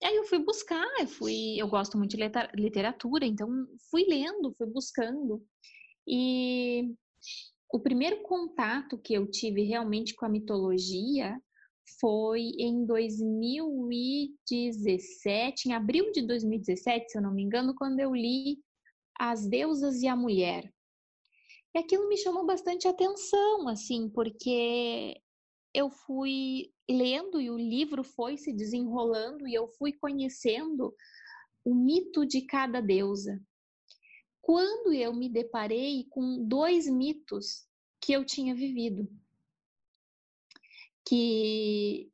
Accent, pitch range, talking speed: Brazilian, 230-320 Hz, 120 wpm